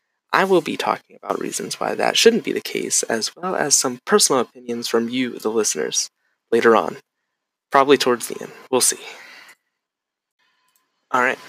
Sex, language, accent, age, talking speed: male, English, American, 20-39, 160 wpm